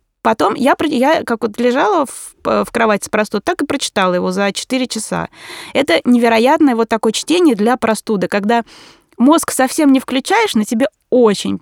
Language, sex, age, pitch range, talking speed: Russian, female, 20-39, 205-265 Hz, 170 wpm